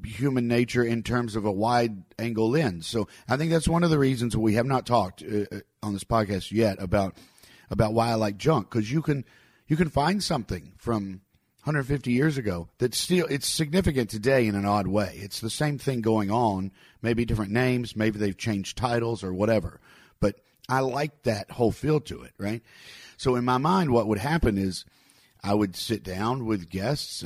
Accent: American